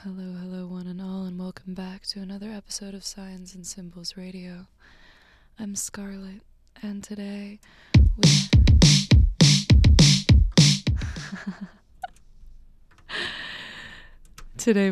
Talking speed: 90 wpm